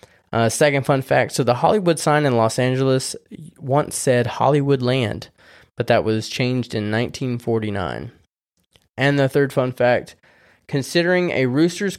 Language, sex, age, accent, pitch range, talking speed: English, male, 20-39, American, 115-140 Hz, 145 wpm